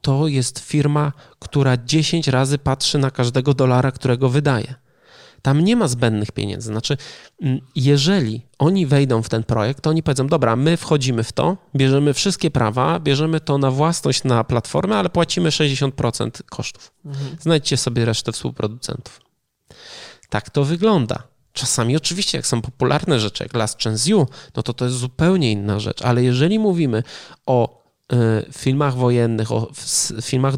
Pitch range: 120-150 Hz